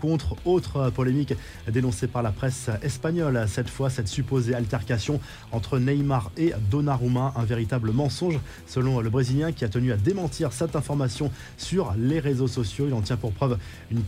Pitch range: 120-145 Hz